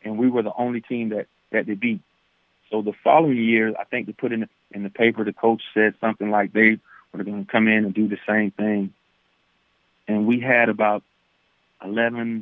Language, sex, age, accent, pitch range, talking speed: English, male, 40-59, American, 100-110 Hz, 215 wpm